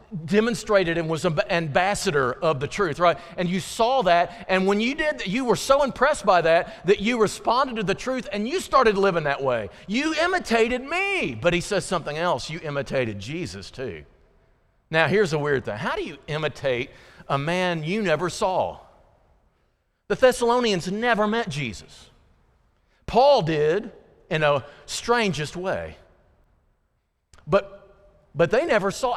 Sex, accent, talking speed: male, American, 160 wpm